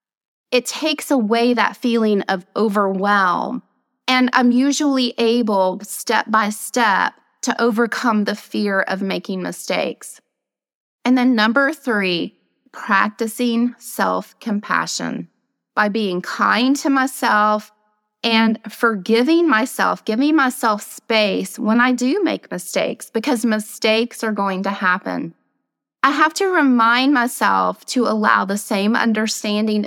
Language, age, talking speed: English, 30-49, 120 wpm